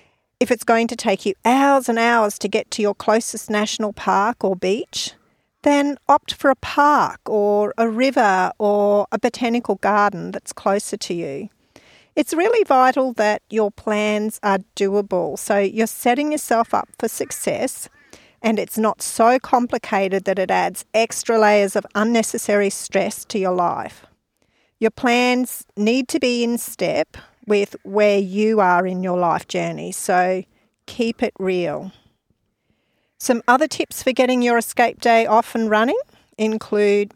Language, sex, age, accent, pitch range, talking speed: English, female, 40-59, Australian, 200-245 Hz, 155 wpm